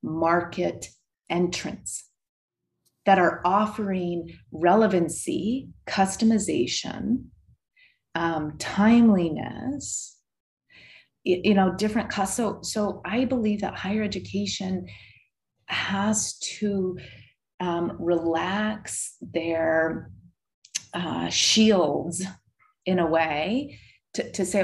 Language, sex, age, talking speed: English, female, 30-49, 85 wpm